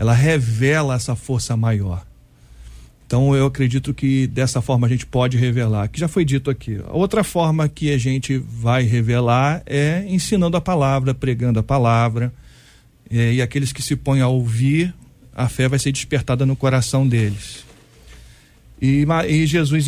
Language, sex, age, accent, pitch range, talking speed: Portuguese, male, 40-59, Brazilian, 120-150 Hz, 165 wpm